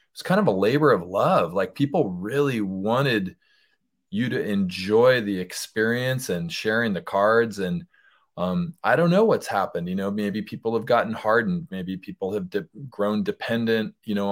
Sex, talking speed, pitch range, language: male, 175 wpm, 100-135 Hz, English